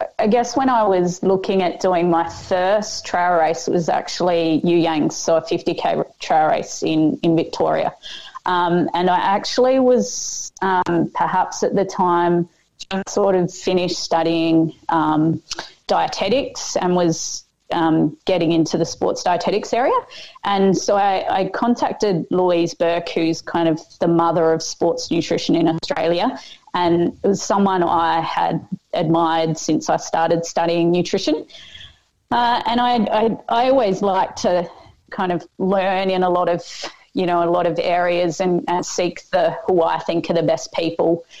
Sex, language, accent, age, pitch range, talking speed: female, English, Australian, 20-39, 170-195 Hz, 160 wpm